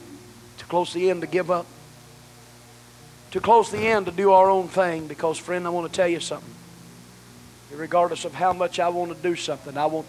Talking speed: 220 wpm